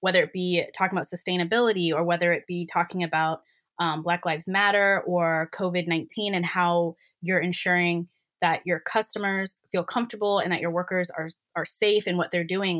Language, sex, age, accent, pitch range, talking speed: English, female, 20-39, American, 170-195 Hz, 180 wpm